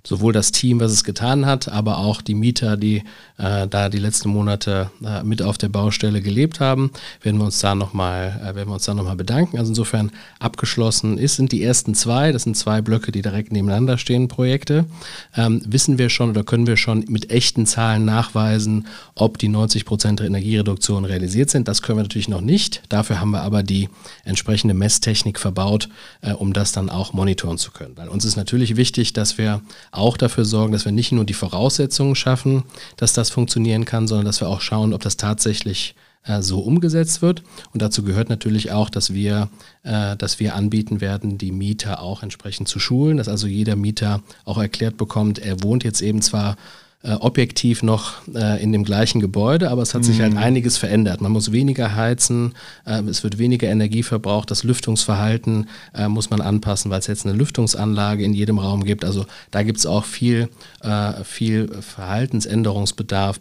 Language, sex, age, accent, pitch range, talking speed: German, male, 40-59, German, 100-115 Hz, 185 wpm